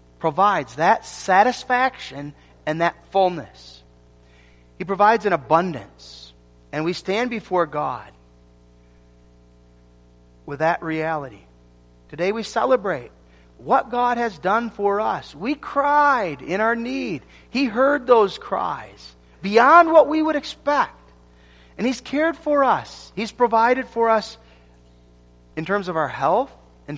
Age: 40-59